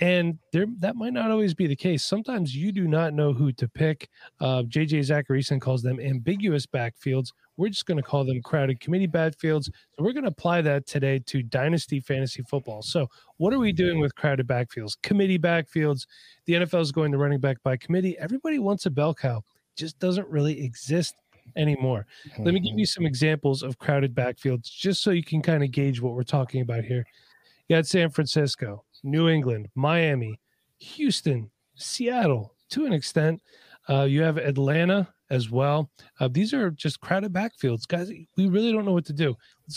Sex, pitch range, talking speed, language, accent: male, 135-170 Hz, 190 wpm, English, American